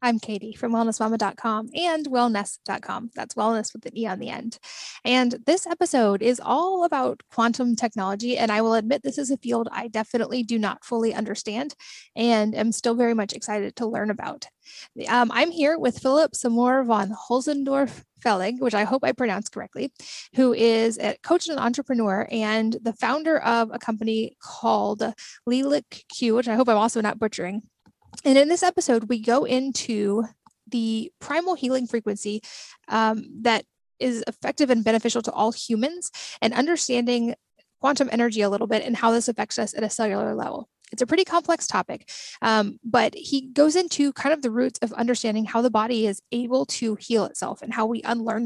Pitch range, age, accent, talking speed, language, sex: 220-260 Hz, 10-29, American, 180 wpm, English, female